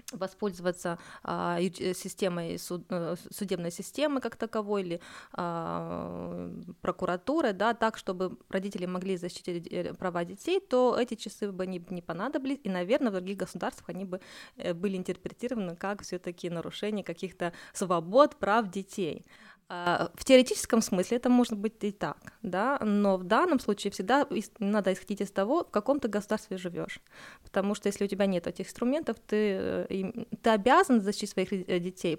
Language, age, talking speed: Russian, 20-39, 140 wpm